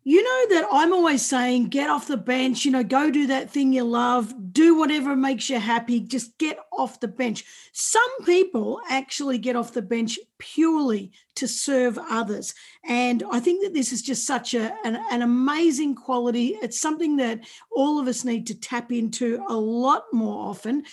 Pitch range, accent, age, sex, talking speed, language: 230-280 Hz, Australian, 40-59, female, 185 wpm, English